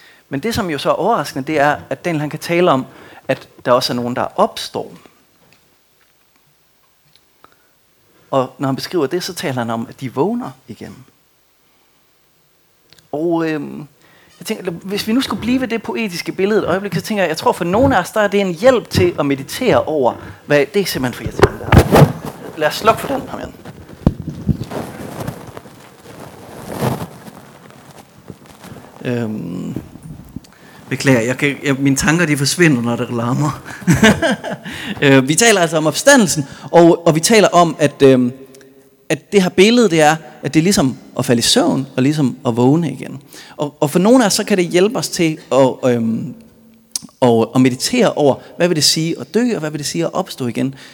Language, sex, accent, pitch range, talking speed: Danish, male, native, 130-185 Hz, 185 wpm